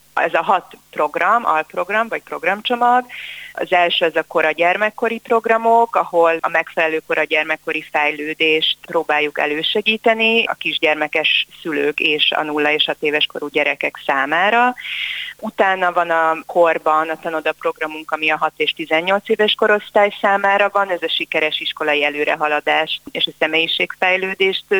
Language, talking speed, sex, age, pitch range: Hungarian, 135 wpm, female, 30-49, 155-200 Hz